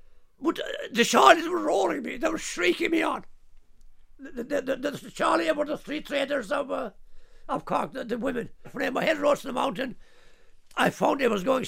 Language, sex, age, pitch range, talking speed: English, male, 60-79, 220-310 Hz, 195 wpm